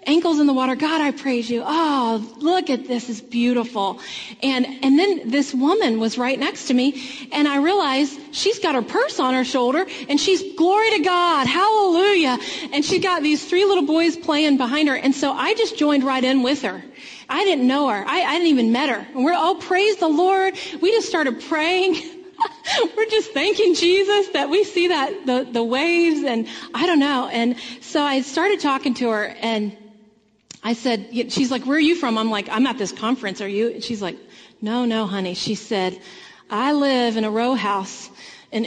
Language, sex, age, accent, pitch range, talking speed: English, female, 30-49, American, 240-335 Hz, 205 wpm